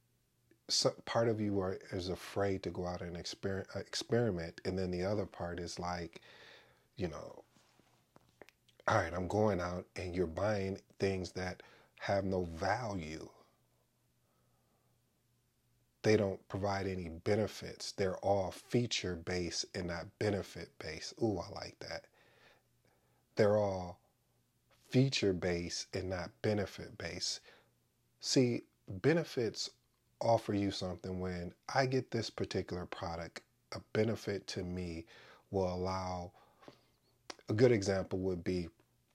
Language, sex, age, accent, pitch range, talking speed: English, male, 40-59, American, 90-105 Hz, 125 wpm